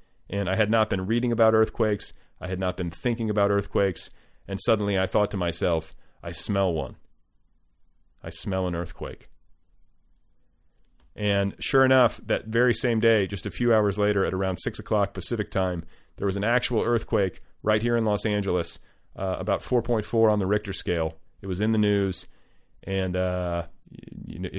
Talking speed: 170 wpm